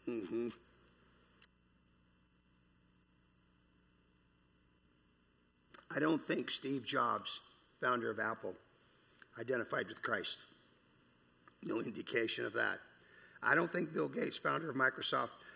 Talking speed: 95 wpm